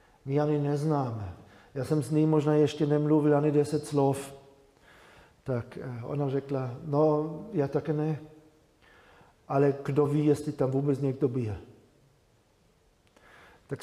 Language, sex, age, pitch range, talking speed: Czech, male, 40-59, 120-145 Hz, 125 wpm